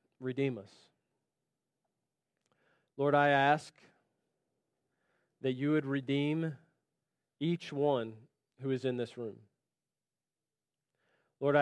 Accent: American